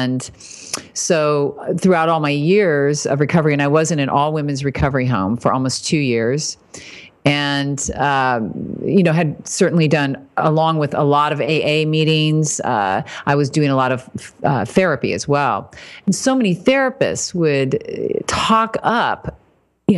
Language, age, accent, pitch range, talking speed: English, 40-59, American, 145-185 Hz, 160 wpm